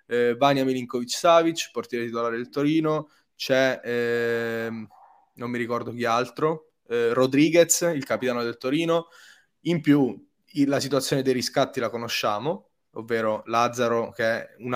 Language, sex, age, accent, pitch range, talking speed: Italian, male, 20-39, native, 120-145 Hz, 135 wpm